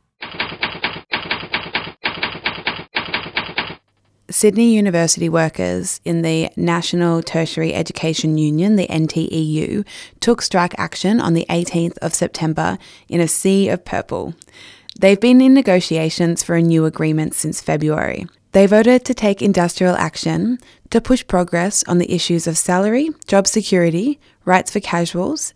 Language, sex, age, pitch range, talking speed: English, female, 20-39, 165-205 Hz, 125 wpm